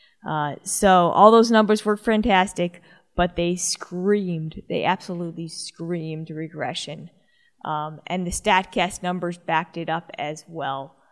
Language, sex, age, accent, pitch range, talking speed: English, female, 20-39, American, 165-200 Hz, 130 wpm